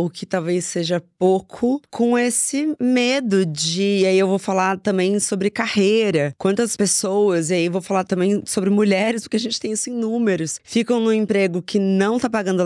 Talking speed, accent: 190 wpm, Brazilian